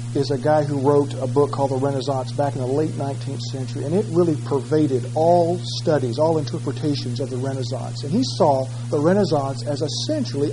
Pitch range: 120-150 Hz